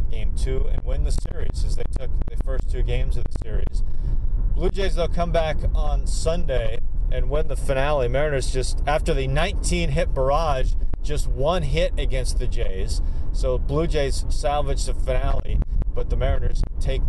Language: English